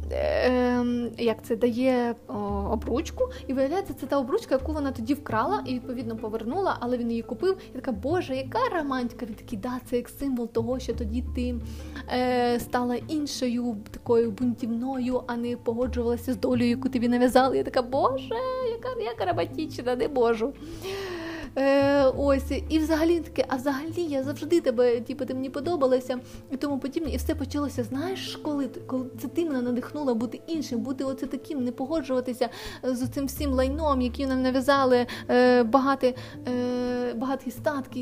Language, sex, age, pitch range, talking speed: Ukrainian, female, 20-39, 245-285 Hz, 155 wpm